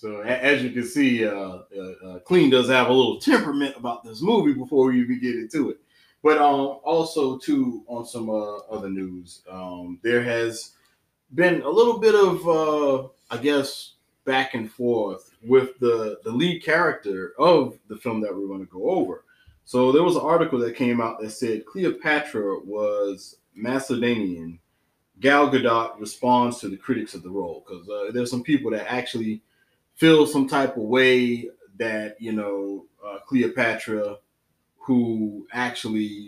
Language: English